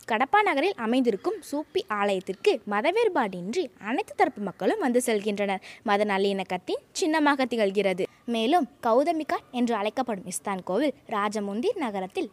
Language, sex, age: Tamil, female, 20-39